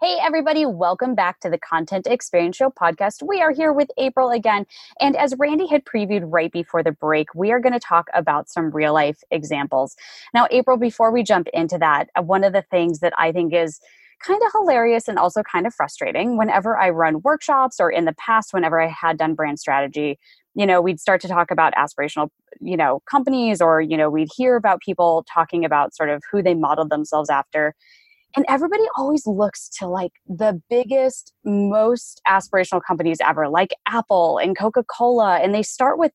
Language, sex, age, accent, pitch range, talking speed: English, female, 20-39, American, 165-255 Hz, 200 wpm